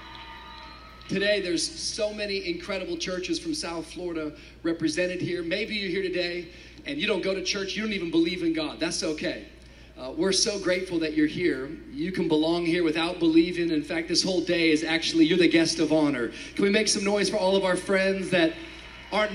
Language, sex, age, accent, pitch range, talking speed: English, male, 30-49, American, 155-200 Hz, 205 wpm